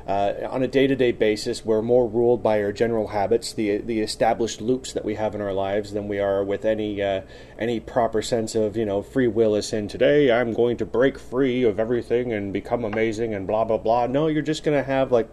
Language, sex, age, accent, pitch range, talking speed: English, male, 30-49, American, 105-130 Hz, 235 wpm